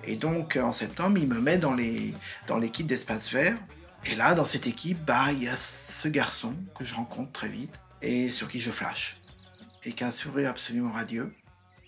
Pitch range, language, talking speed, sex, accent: 130-180 Hz, French, 205 wpm, male, French